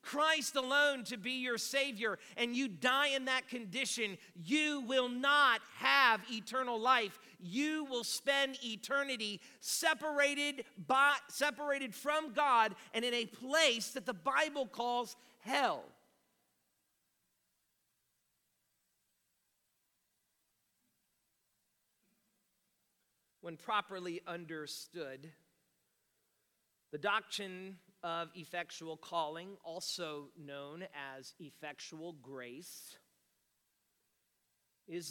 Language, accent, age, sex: English, American, 40-59, male